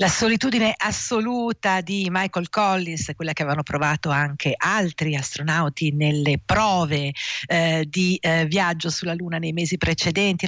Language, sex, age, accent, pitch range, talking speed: Italian, female, 50-69, native, 155-195 Hz, 135 wpm